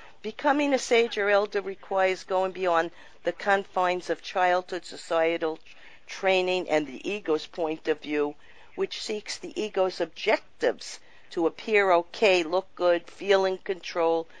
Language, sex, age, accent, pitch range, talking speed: English, female, 50-69, American, 165-210 Hz, 135 wpm